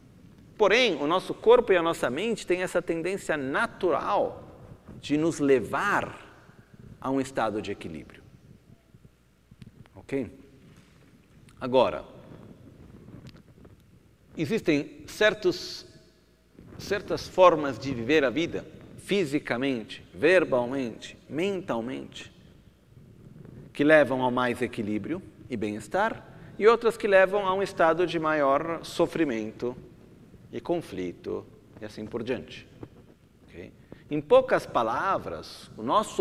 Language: Italian